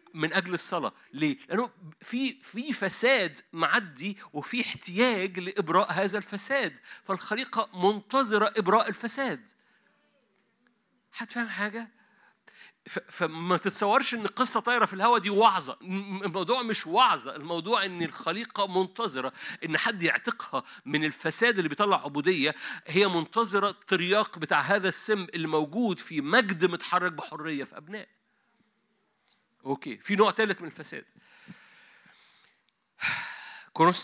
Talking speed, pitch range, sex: 115 wpm, 165-220 Hz, male